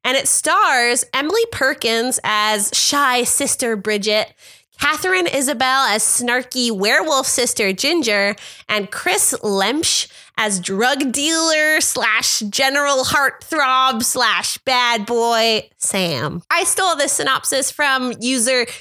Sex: female